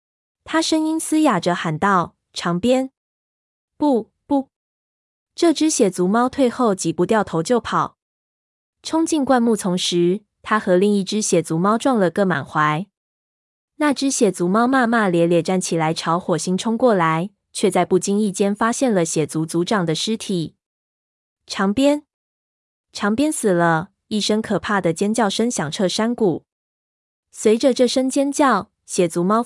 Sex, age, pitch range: female, 20-39, 175-230 Hz